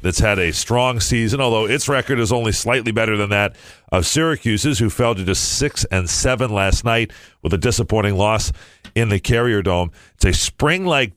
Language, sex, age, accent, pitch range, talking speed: English, male, 40-59, American, 90-115 Hz, 185 wpm